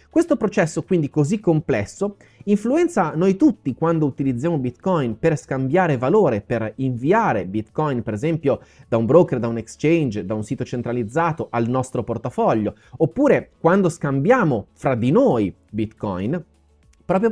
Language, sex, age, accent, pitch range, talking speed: Italian, male, 30-49, native, 130-190 Hz, 140 wpm